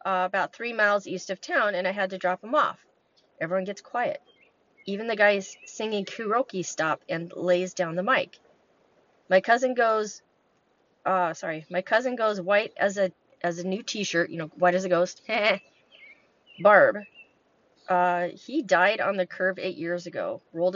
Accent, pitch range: American, 175-210 Hz